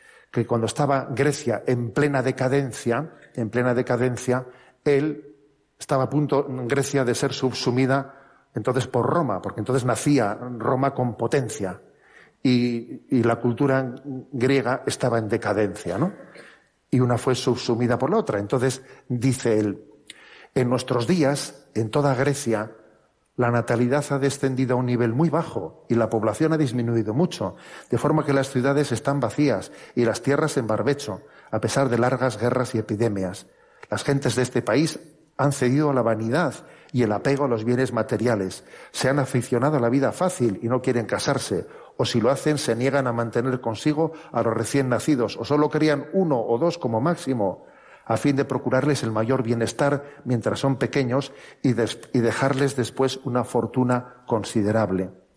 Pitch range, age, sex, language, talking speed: 115-140 Hz, 50-69, male, Spanish, 165 wpm